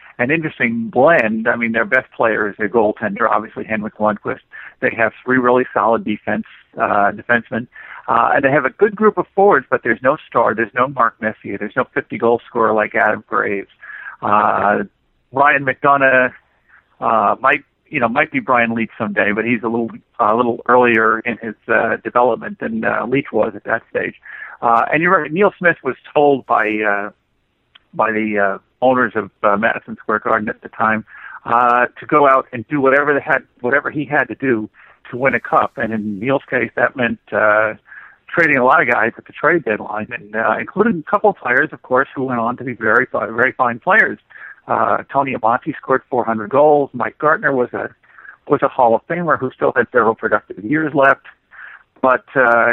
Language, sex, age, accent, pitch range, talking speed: English, male, 50-69, American, 110-135 Hz, 200 wpm